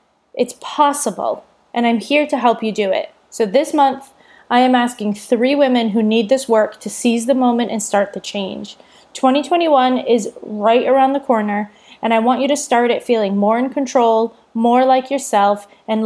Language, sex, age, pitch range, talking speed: English, female, 20-39, 215-255 Hz, 190 wpm